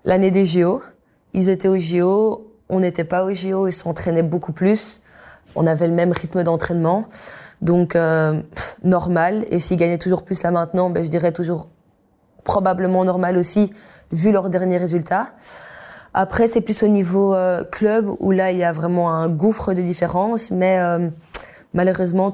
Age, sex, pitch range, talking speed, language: 20-39, female, 180-200 Hz, 170 wpm, French